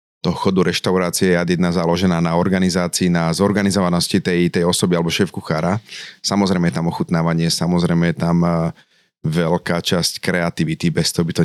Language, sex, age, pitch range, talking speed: Slovak, male, 30-49, 85-95 Hz, 160 wpm